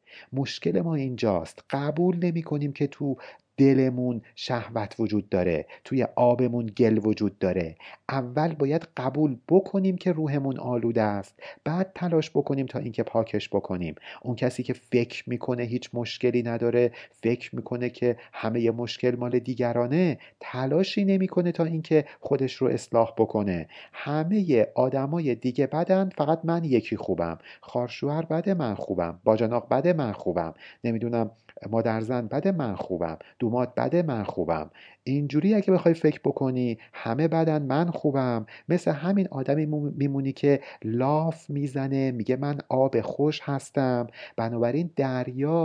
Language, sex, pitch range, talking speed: Persian, male, 115-155 Hz, 140 wpm